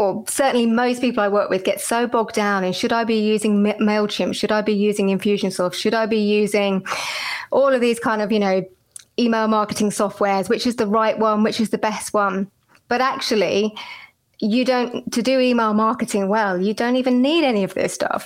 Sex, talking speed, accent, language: female, 205 wpm, British, English